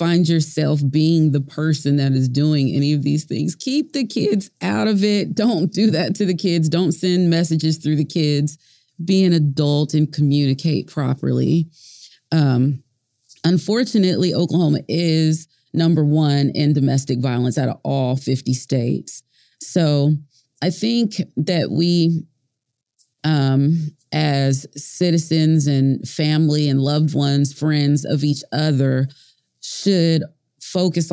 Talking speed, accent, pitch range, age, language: 135 wpm, American, 140-170 Hz, 30-49, English